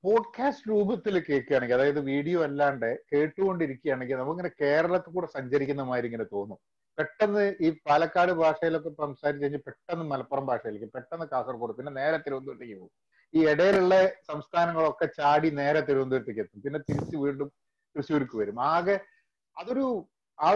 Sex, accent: male, native